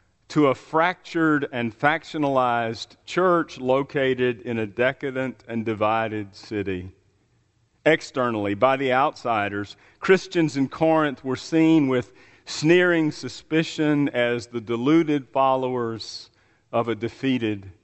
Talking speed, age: 110 wpm, 50-69